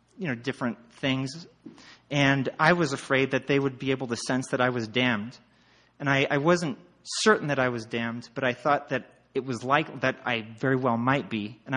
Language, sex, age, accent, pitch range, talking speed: English, male, 30-49, American, 120-150 Hz, 215 wpm